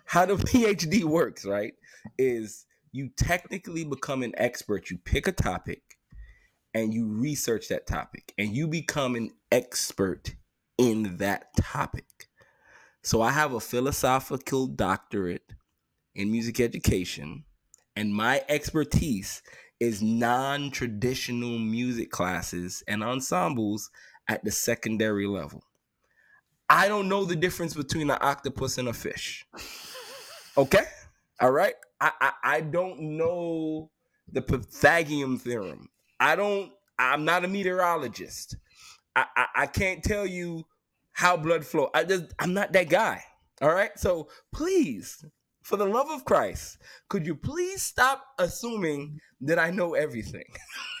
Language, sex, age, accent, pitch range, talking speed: English, male, 20-39, American, 115-175 Hz, 130 wpm